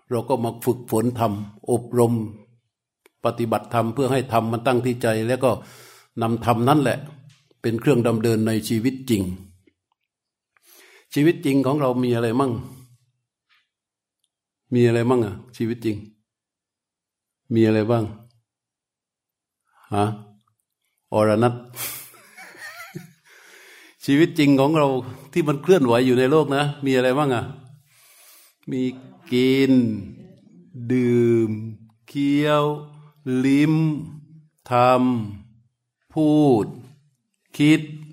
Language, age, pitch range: Thai, 60-79, 115-145 Hz